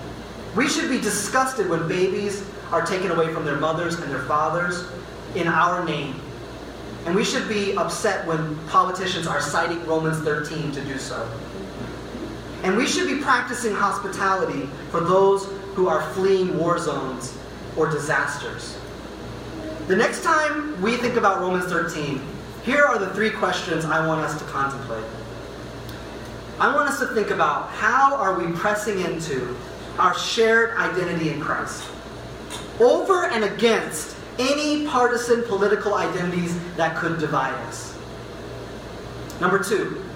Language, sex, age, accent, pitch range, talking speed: English, male, 30-49, American, 155-210 Hz, 140 wpm